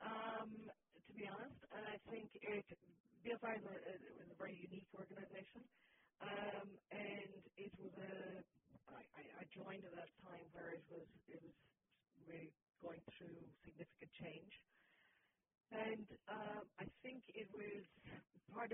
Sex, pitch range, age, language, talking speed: female, 165-205 Hz, 40-59, English, 140 wpm